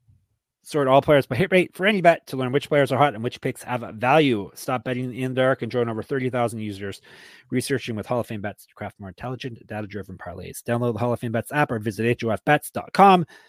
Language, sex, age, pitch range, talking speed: English, male, 30-49, 115-145 Hz, 230 wpm